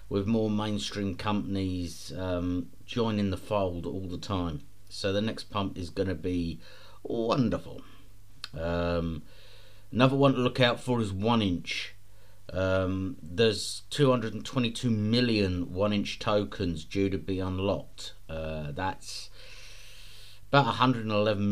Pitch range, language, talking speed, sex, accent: 95-115 Hz, English, 115 wpm, male, British